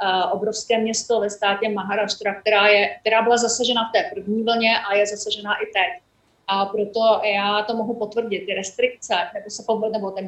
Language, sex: Czech, female